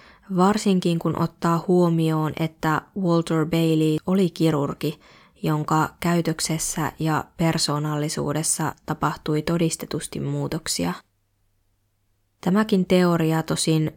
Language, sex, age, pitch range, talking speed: Finnish, female, 20-39, 155-175 Hz, 80 wpm